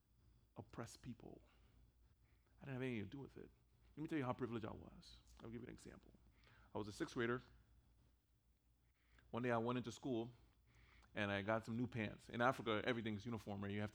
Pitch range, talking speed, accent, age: 105-125 Hz, 200 wpm, American, 30-49